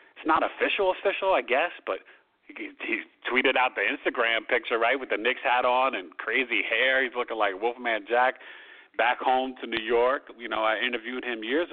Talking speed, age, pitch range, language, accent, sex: 195 wpm, 40-59, 110-130 Hz, English, American, male